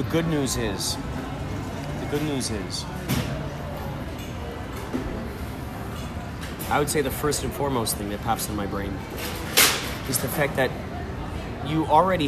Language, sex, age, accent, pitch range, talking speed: English, male, 30-49, American, 115-155 Hz, 130 wpm